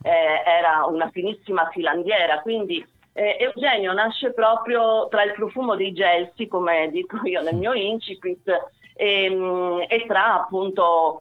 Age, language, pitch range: 40-59, Italian, 175-230 Hz